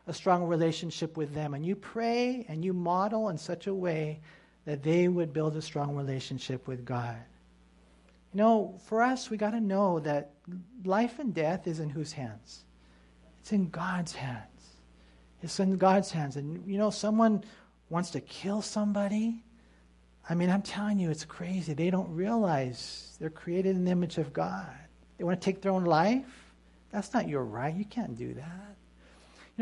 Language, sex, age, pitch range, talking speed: English, male, 40-59, 155-215 Hz, 180 wpm